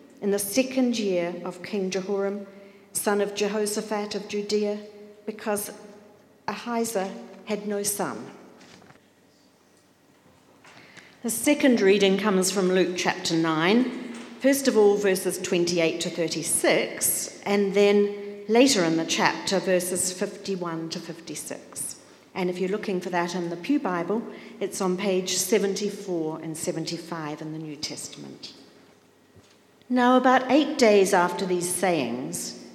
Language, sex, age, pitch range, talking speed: English, female, 50-69, 185-245 Hz, 125 wpm